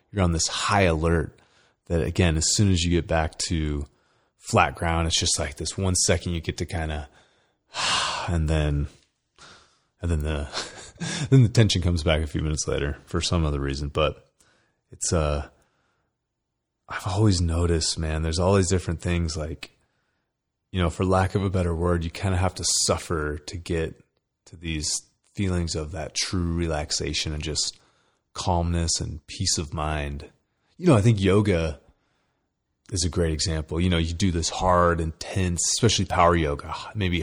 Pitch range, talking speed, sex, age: 80-95 Hz, 175 wpm, male, 30-49